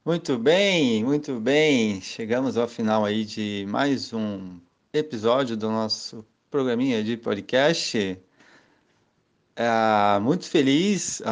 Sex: male